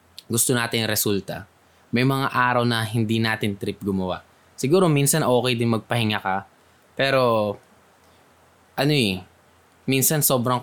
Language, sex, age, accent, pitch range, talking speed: Filipino, male, 20-39, native, 95-125 Hz, 125 wpm